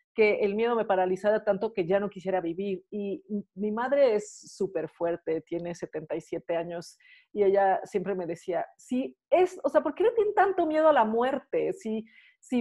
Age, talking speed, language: 40-59, 190 wpm, Spanish